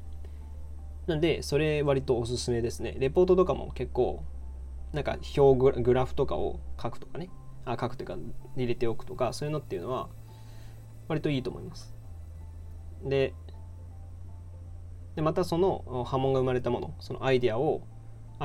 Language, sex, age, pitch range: Japanese, male, 20-39, 85-135 Hz